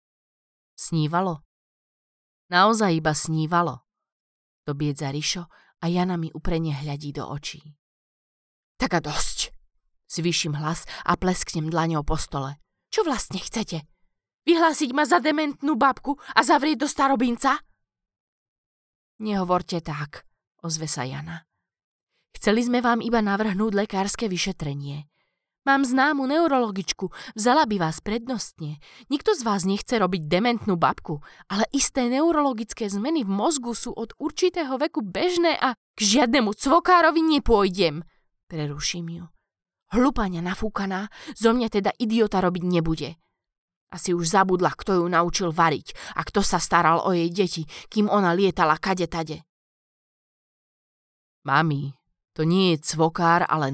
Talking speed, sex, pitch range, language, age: 125 wpm, female, 160-240 Hz, Slovak, 20-39